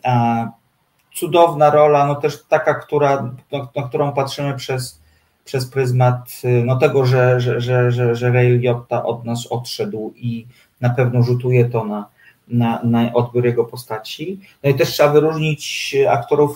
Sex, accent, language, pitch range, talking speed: male, native, Polish, 120-145 Hz, 155 wpm